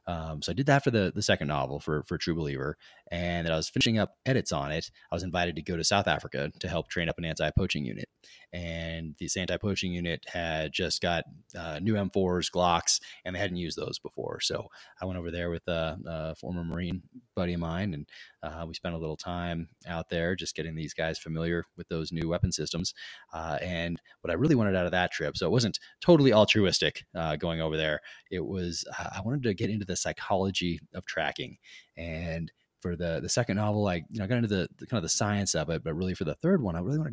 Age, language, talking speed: 30-49, English, 235 wpm